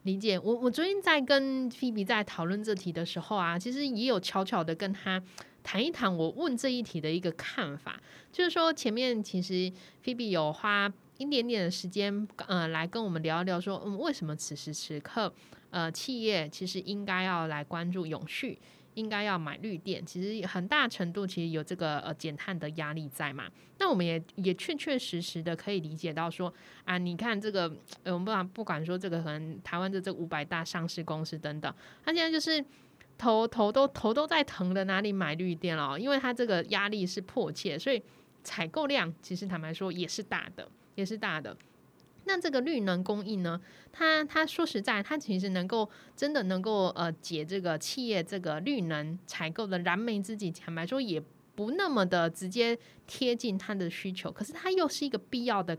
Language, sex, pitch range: Chinese, female, 170-240 Hz